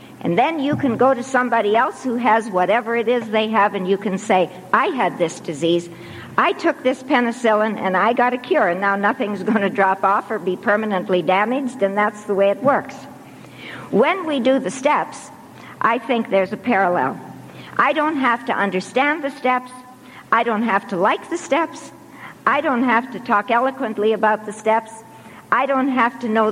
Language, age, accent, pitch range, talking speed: English, 60-79, American, 190-250 Hz, 195 wpm